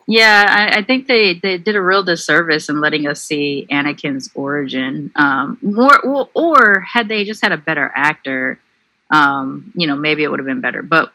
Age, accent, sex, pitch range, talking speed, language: 30-49, American, female, 150-180 Hz, 195 wpm, English